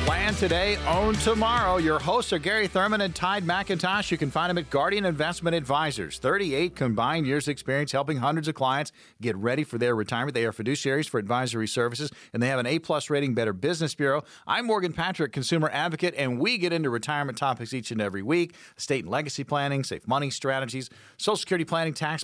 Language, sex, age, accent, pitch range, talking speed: English, male, 40-59, American, 120-170 Hz, 200 wpm